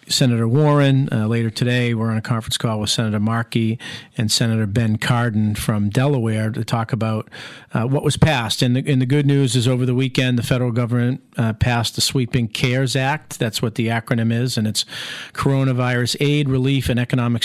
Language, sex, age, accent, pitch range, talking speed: English, male, 50-69, American, 115-135 Hz, 195 wpm